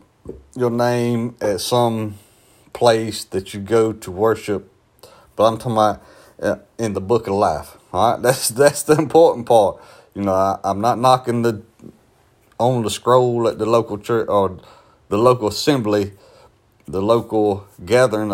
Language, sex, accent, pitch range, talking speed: English, male, American, 95-120 Hz, 155 wpm